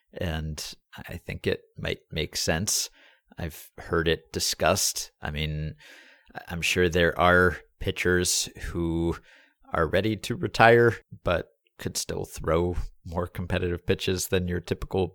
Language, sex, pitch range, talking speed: English, male, 85-105 Hz, 130 wpm